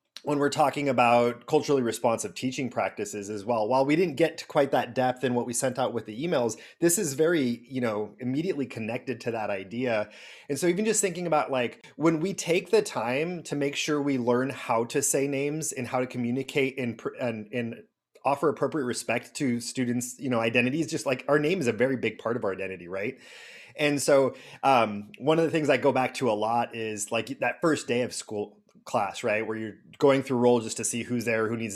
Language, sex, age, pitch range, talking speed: English, male, 30-49, 120-145 Hz, 225 wpm